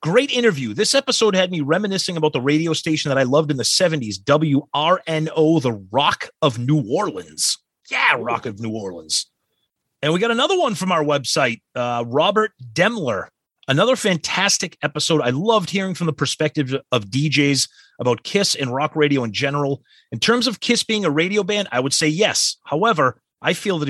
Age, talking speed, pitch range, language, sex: 30-49, 185 wpm, 130-175 Hz, English, male